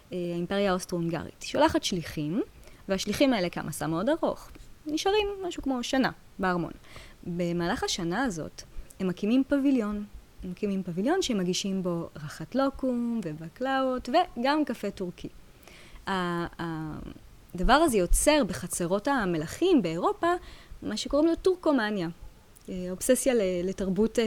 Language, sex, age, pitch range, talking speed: Hebrew, female, 20-39, 180-275 Hz, 105 wpm